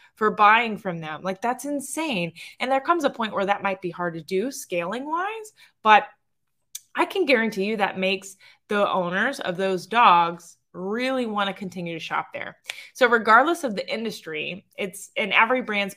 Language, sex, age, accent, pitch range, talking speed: English, female, 20-39, American, 180-230 Hz, 185 wpm